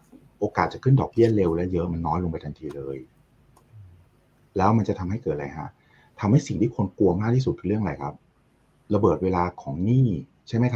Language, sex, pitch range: Thai, male, 85-125 Hz